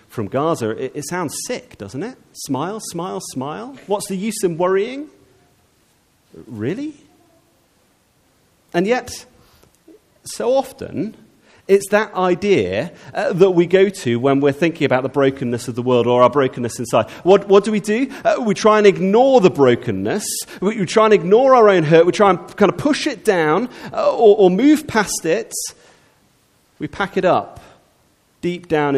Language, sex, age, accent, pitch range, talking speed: English, male, 40-59, British, 130-205 Hz, 170 wpm